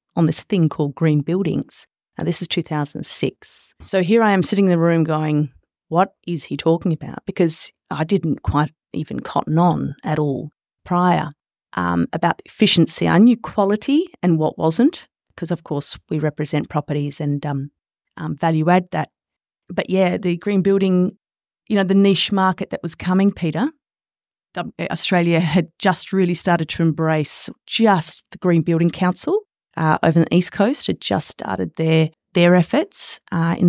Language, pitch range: English, 155-190 Hz